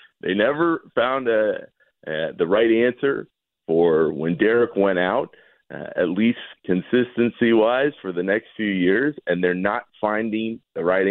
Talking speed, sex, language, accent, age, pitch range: 145 wpm, male, English, American, 40-59, 90-135 Hz